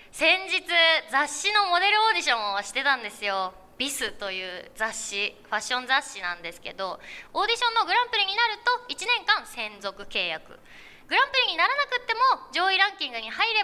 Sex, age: female, 20-39